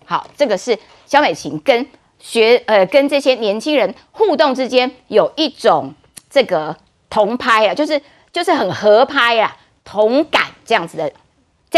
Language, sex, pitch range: Chinese, female, 200-285 Hz